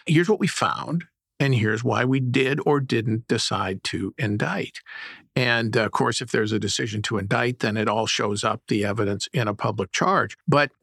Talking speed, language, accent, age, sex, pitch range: 195 wpm, English, American, 50-69, male, 115-155 Hz